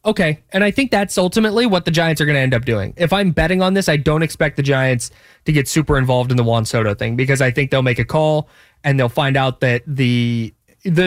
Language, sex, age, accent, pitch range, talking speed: English, male, 20-39, American, 135-165 Hz, 255 wpm